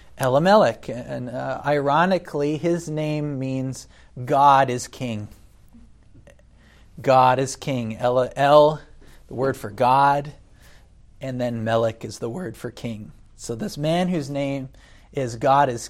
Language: English